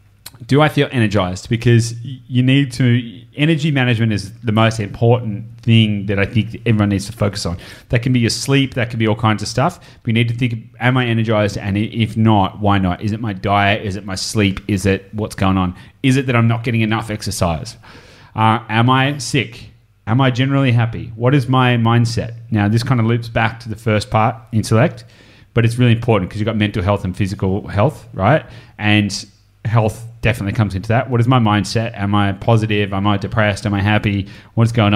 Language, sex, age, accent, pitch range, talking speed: English, male, 30-49, Australian, 105-120 Hz, 215 wpm